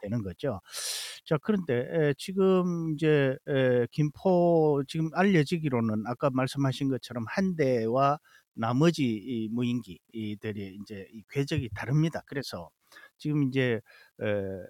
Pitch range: 115-170 Hz